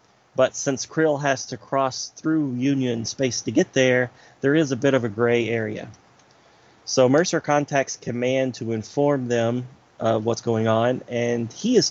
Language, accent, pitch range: English, American, 115-135 Hz